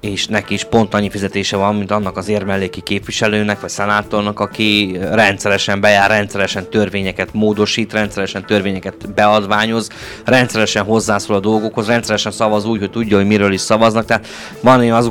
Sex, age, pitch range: male, 20-39, 95-110 Hz